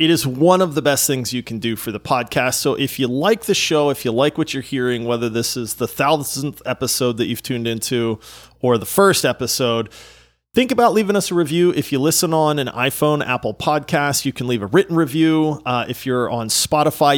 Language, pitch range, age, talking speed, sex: English, 125-200 Hz, 30-49, 225 wpm, male